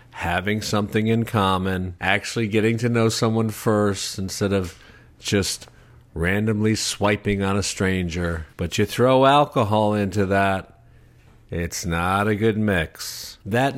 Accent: American